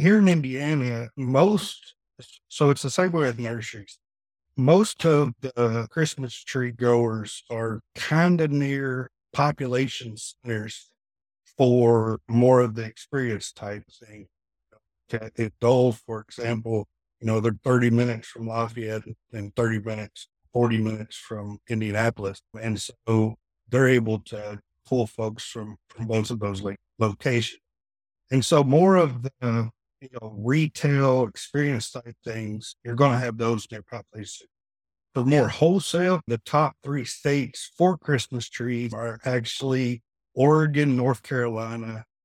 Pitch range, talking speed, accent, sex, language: 110-135 Hz, 135 wpm, American, male, English